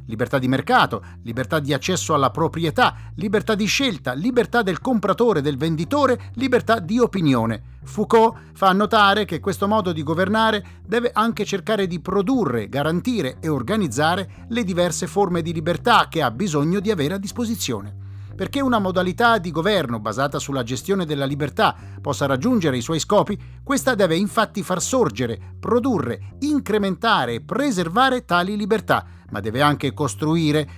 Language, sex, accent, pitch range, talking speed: Italian, male, native, 130-210 Hz, 150 wpm